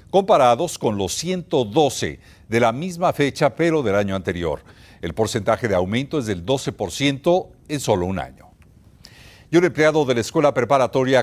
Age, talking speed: 50-69, 160 wpm